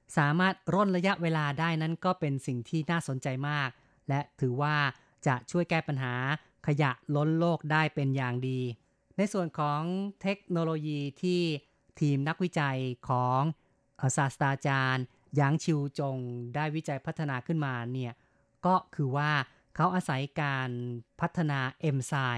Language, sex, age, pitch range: Thai, female, 30-49, 135-160 Hz